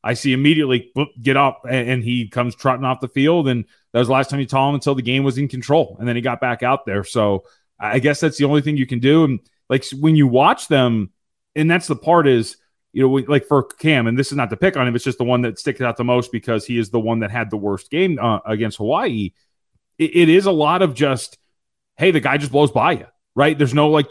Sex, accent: male, American